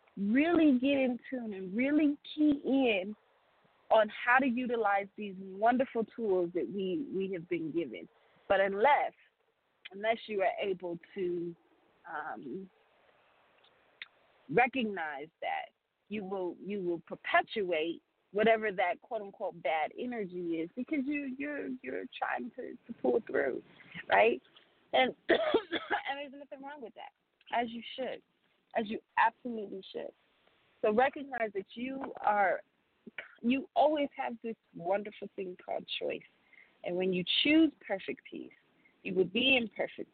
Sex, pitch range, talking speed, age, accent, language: female, 200-285 Hz, 135 wpm, 30-49, American, English